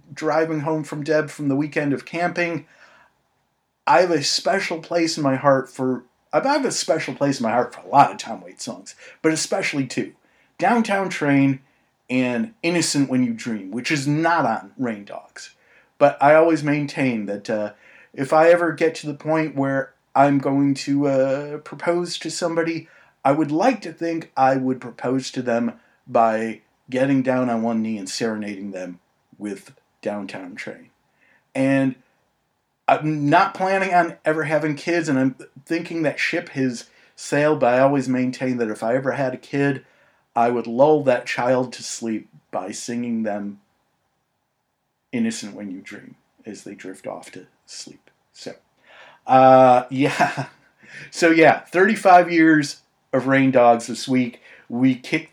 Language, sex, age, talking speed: English, male, 40-59, 165 wpm